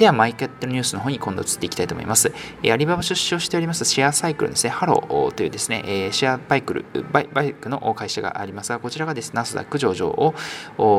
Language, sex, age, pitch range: Japanese, male, 20-39, 110-155 Hz